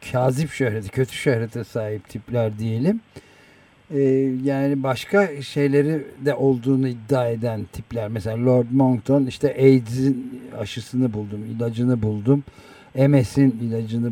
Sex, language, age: male, Turkish, 50-69